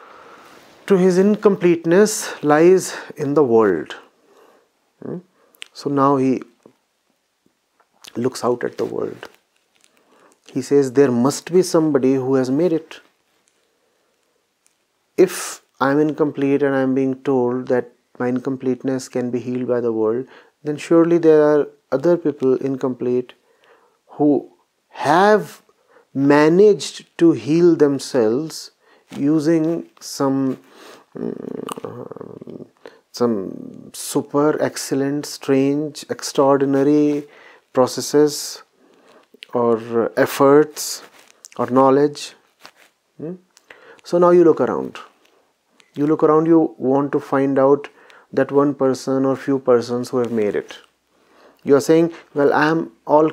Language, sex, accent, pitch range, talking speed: English, male, Indian, 135-170 Hz, 115 wpm